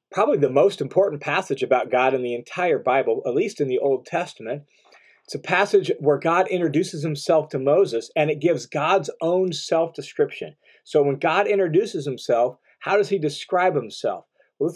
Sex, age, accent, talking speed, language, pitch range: male, 40-59, American, 175 wpm, English, 145-220 Hz